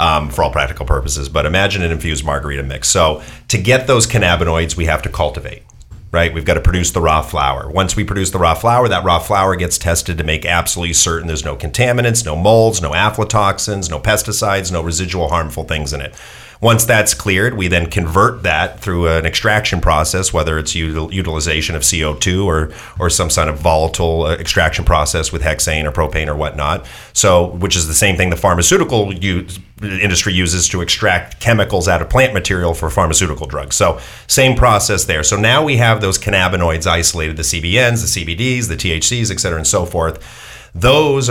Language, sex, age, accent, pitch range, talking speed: English, male, 40-59, American, 80-105 Hz, 195 wpm